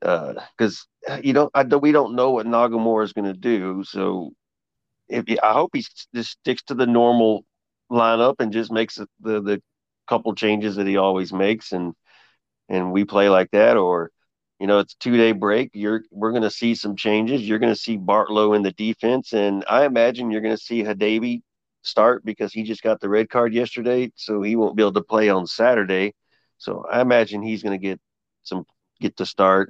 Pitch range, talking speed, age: 100-115 Hz, 205 wpm, 40-59